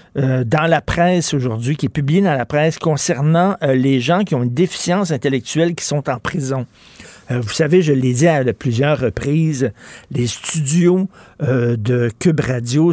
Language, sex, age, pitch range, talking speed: French, male, 50-69, 130-160 Hz, 180 wpm